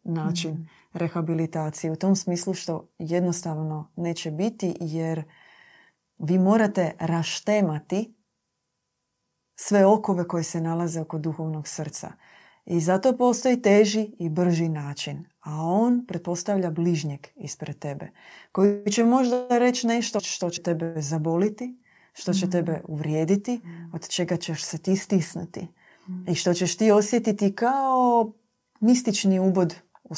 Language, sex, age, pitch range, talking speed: Croatian, female, 30-49, 165-205 Hz, 125 wpm